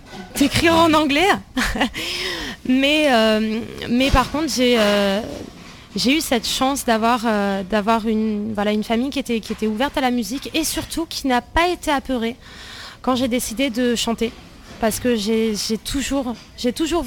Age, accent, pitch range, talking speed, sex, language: 20-39, French, 215-260 Hz, 170 wpm, female, French